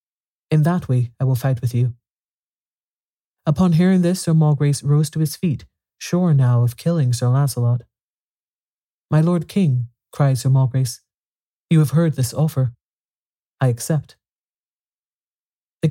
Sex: male